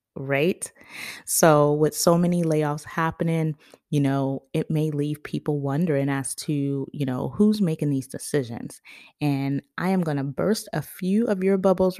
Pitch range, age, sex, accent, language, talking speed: 145-180 Hz, 20-39, female, American, English, 165 wpm